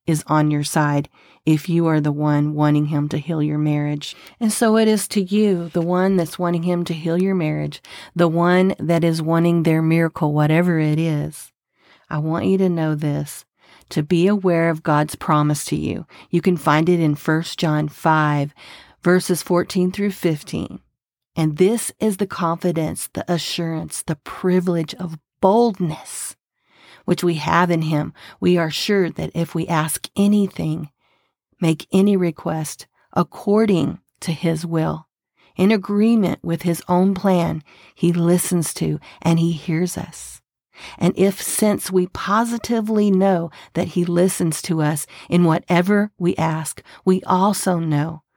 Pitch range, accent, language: 155-185 Hz, American, English